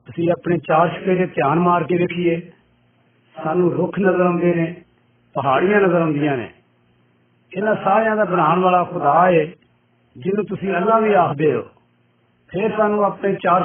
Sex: male